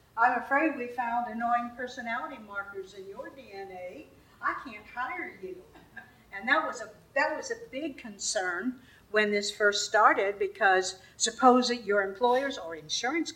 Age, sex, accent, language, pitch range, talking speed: 60-79, female, American, English, 205-265 Hz, 155 wpm